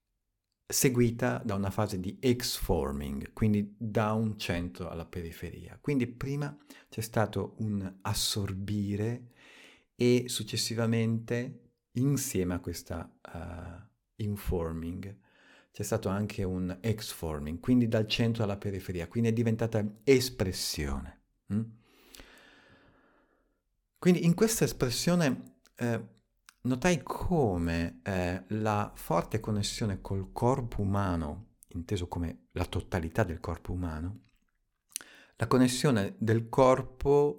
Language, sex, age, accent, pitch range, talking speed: Italian, male, 50-69, native, 90-120 Hz, 105 wpm